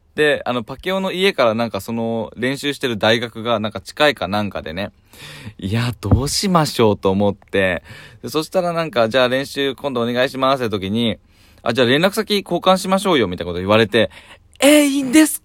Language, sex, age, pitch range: Japanese, male, 20-39, 100-140 Hz